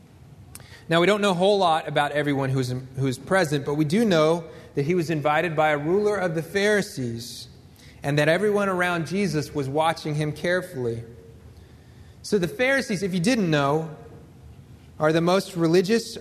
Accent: American